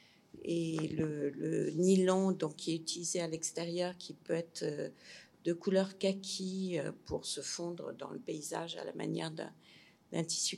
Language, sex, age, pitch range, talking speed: French, female, 50-69, 160-190 Hz, 145 wpm